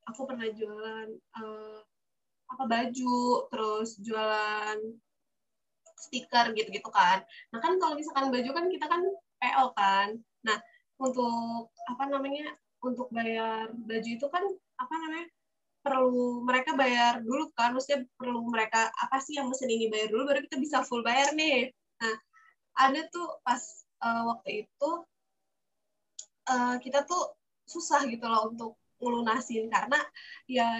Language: Indonesian